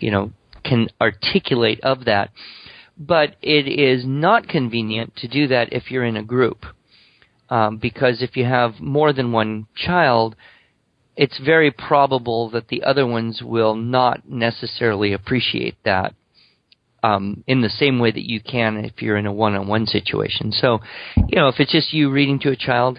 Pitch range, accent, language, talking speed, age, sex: 110-135 Hz, American, English, 170 wpm, 40-59, male